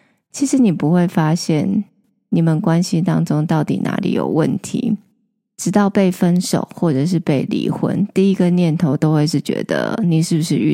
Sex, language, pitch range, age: female, Chinese, 175-225 Hz, 20-39